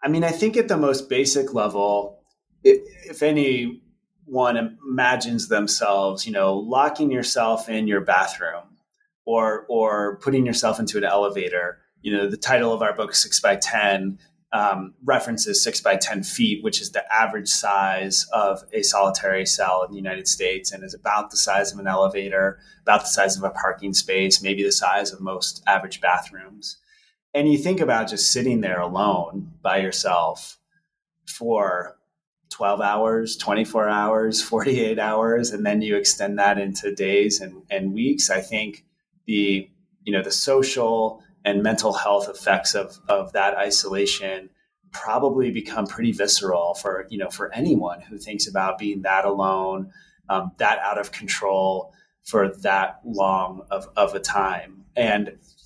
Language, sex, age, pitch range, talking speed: English, male, 30-49, 95-130 Hz, 160 wpm